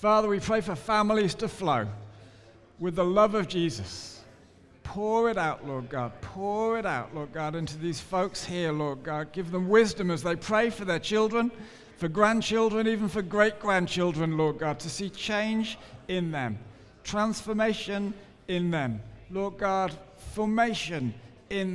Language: English